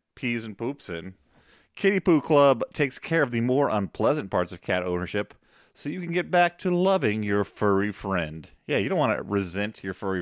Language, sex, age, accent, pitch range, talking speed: English, male, 30-49, American, 95-160 Hz, 205 wpm